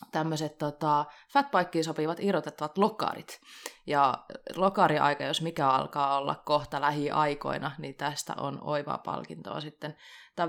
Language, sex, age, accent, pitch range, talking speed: Finnish, female, 20-39, native, 155-205 Hz, 115 wpm